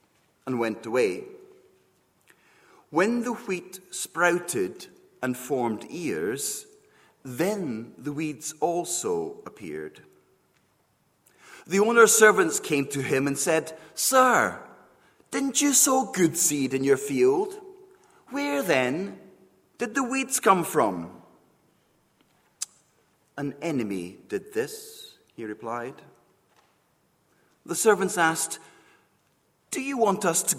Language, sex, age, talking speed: English, male, 40-59, 100 wpm